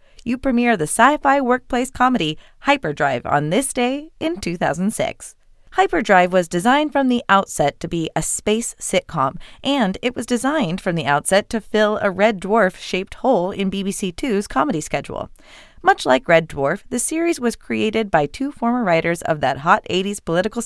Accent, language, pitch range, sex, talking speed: American, English, 165-240 Hz, female, 165 wpm